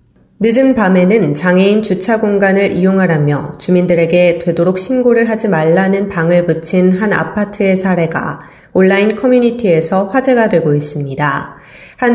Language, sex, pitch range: Korean, female, 170-205 Hz